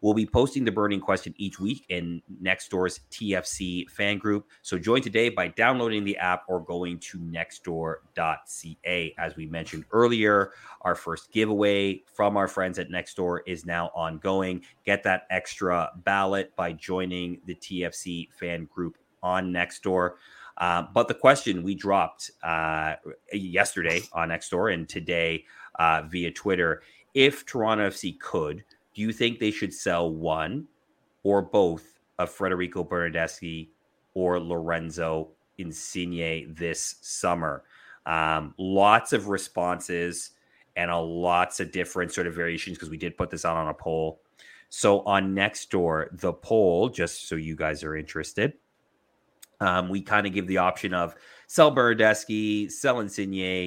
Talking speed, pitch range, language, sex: 150 wpm, 85-100 Hz, English, male